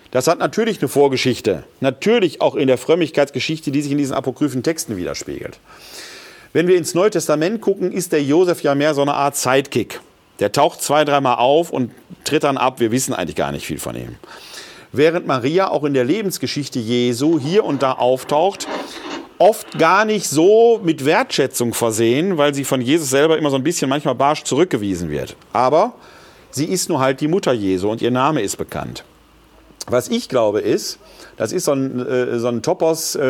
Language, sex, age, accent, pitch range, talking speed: German, male, 40-59, German, 130-165 Hz, 185 wpm